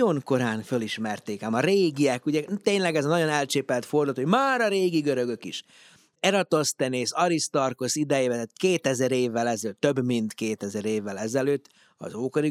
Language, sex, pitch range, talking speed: Hungarian, male, 125-165 Hz, 150 wpm